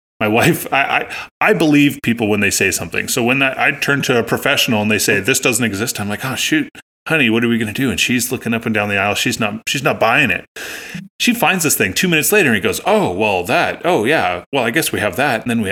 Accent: American